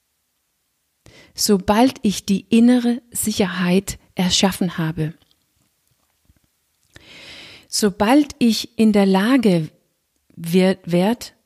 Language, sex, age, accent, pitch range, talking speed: German, female, 40-59, German, 180-235 Hz, 75 wpm